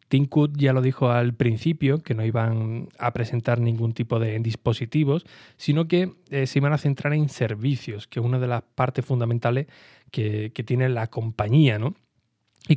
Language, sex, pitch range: Spanish, male, 115-140 Hz